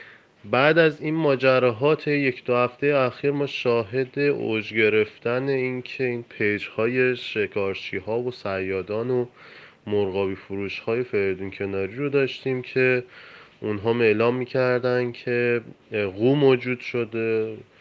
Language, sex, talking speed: Persian, male, 120 wpm